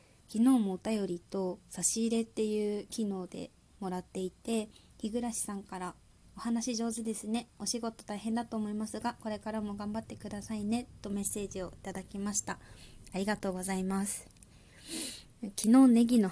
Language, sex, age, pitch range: Japanese, female, 20-39, 165-220 Hz